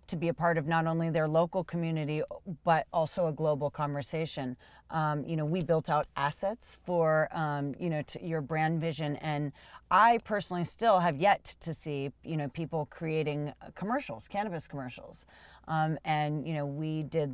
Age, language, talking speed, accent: 30-49, English, 175 wpm, American